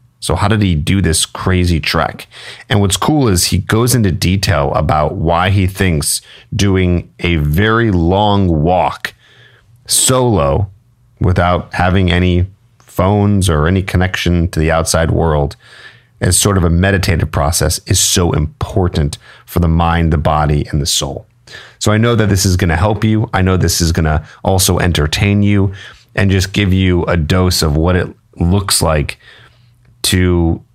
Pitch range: 85-110 Hz